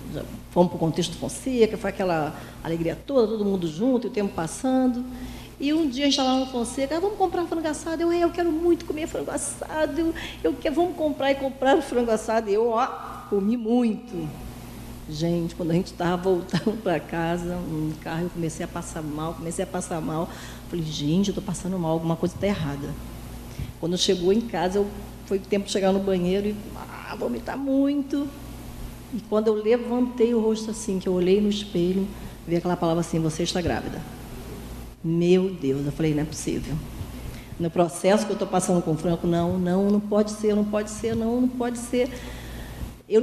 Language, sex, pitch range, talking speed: Portuguese, female, 175-255 Hz, 200 wpm